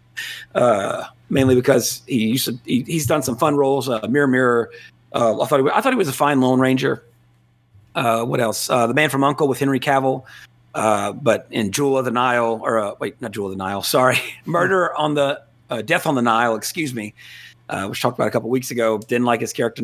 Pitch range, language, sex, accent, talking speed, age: 115-145 Hz, English, male, American, 240 wpm, 40-59